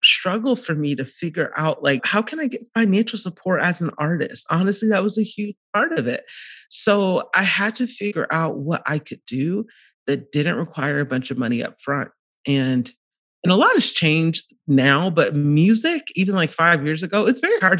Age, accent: 30-49, American